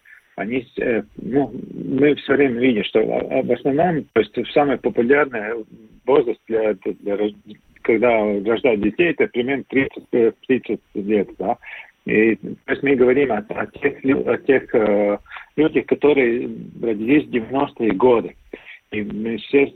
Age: 50-69